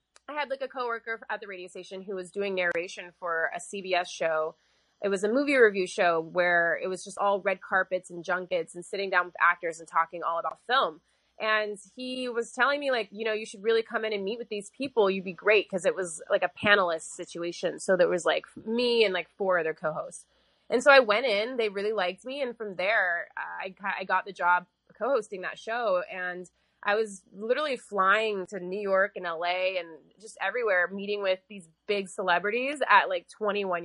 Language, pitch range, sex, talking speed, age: English, 180-225 Hz, female, 215 wpm, 20-39